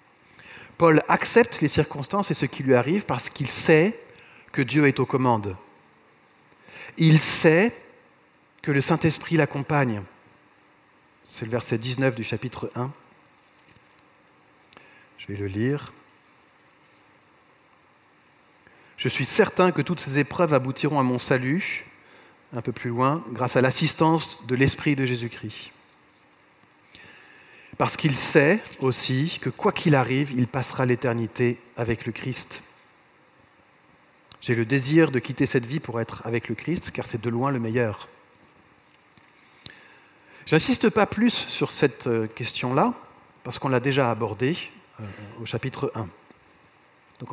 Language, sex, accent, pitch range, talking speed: French, male, French, 120-155 Hz, 130 wpm